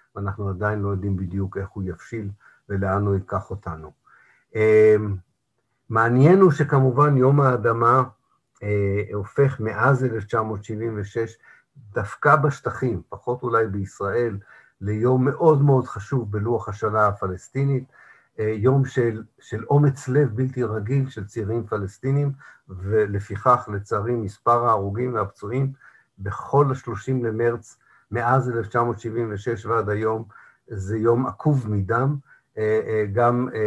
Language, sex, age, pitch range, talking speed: Hebrew, male, 50-69, 100-125 Hz, 105 wpm